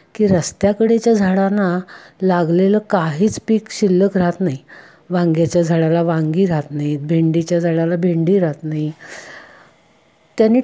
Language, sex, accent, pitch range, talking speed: Hindi, female, native, 160-205 Hz, 90 wpm